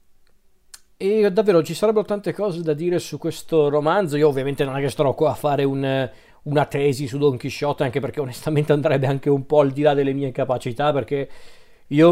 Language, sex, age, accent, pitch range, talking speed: Italian, male, 40-59, native, 125-150 Hz, 205 wpm